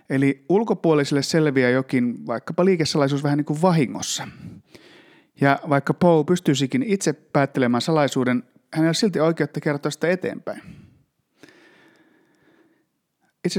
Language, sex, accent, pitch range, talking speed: Finnish, male, native, 125-165 Hz, 110 wpm